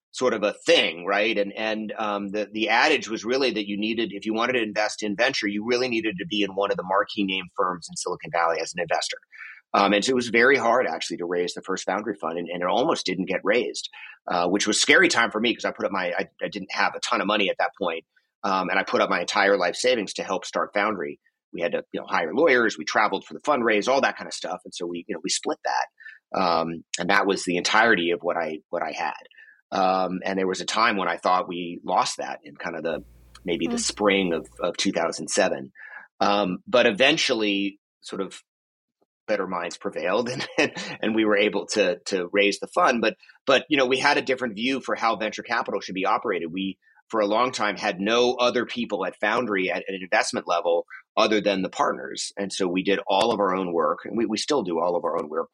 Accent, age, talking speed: American, 30-49, 250 wpm